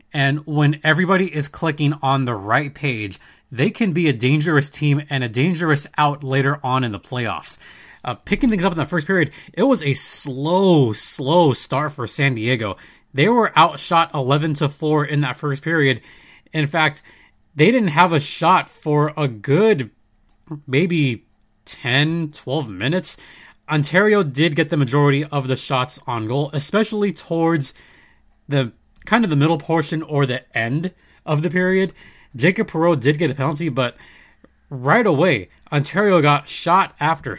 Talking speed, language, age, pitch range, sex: 160 wpm, English, 20-39, 135-170 Hz, male